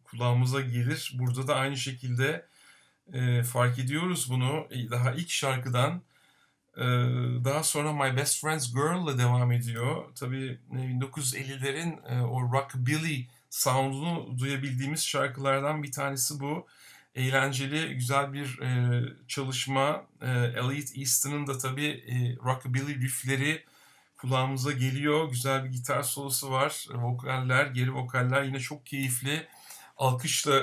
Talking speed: 120 wpm